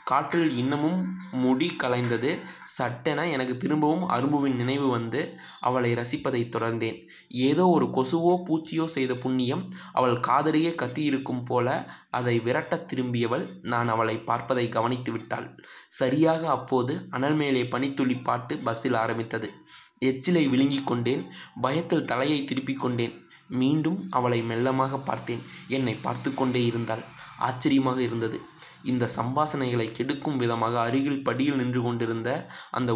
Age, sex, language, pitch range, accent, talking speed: 20-39, male, Tamil, 120-145 Hz, native, 115 wpm